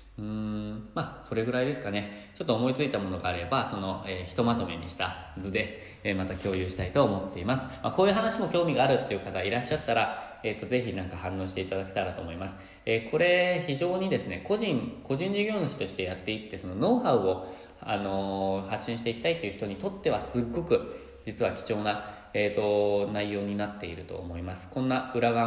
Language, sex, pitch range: Japanese, male, 95-130 Hz